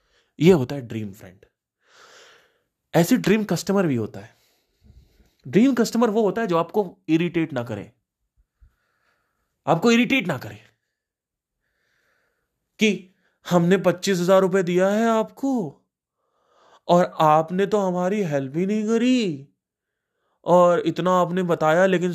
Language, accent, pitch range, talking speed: Hindi, native, 145-230 Hz, 120 wpm